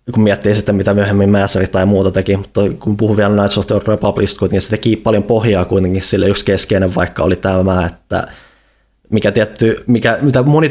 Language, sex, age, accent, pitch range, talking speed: Finnish, male, 20-39, native, 90-105 Hz, 195 wpm